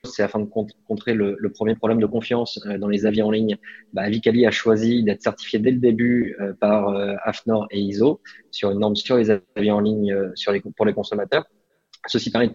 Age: 20-39